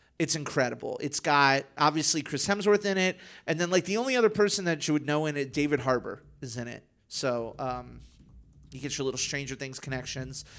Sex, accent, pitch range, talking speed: male, American, 140-200 Hz, 205 wpm